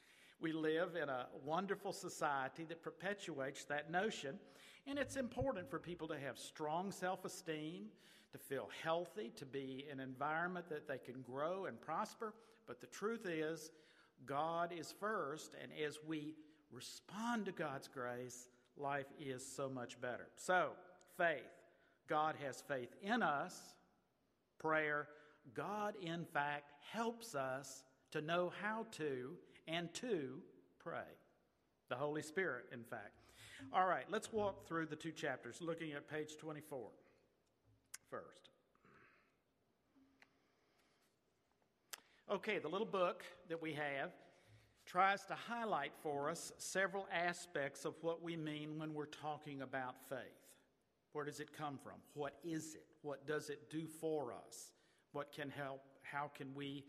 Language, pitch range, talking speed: English, 140-175 Hz, 140 wpm